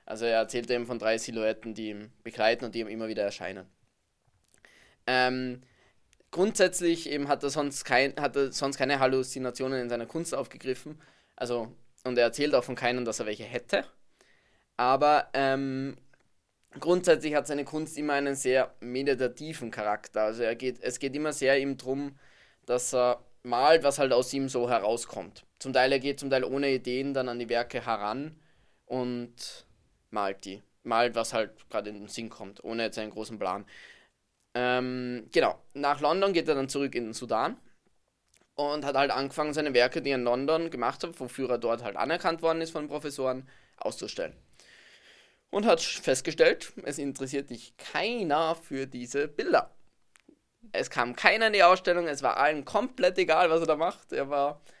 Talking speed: 175 wpm